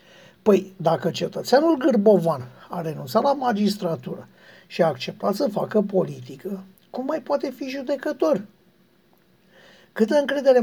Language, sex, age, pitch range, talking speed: Romanian, male, 60-79, 175-230 Hz, 120 wpm